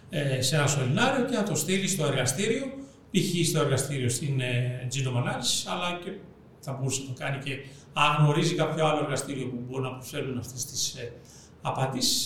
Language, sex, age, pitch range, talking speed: Greek, male, 40-59, 130-160 Hz, 160 wpm